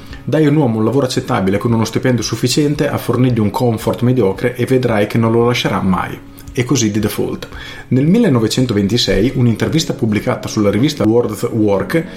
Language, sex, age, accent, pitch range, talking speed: Italian, male, 30-49, native, 105-130 Hz, 180 wpm